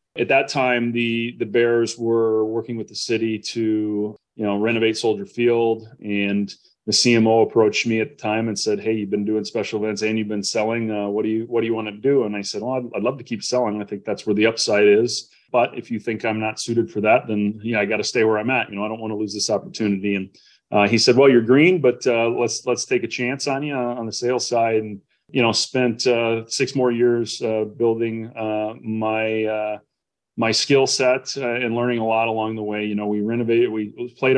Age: 30-49